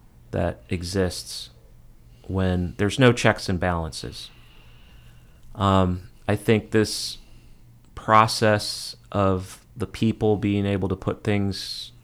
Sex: male